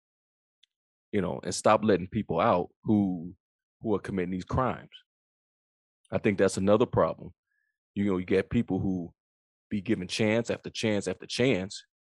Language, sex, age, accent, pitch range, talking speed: English, male, 20-39, American, 90-105 Hz, 155 wpm